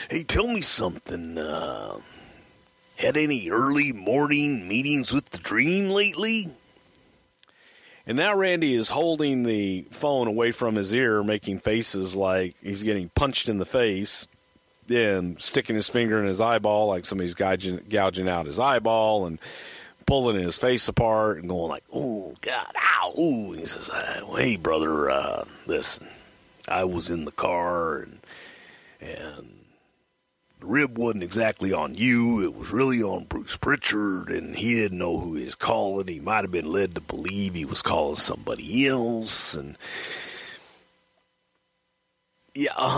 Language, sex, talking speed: English, male, 150 wpm